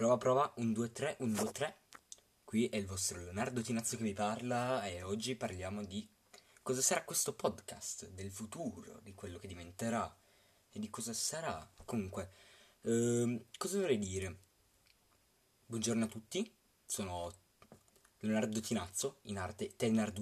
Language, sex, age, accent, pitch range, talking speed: Italian, male, 20-39, native, 100-120 Hz, 135 wpm